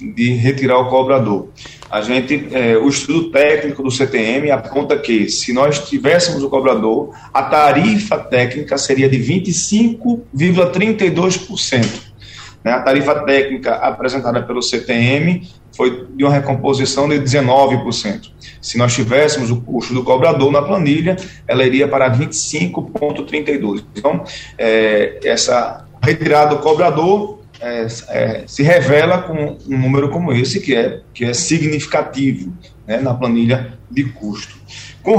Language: Portuguese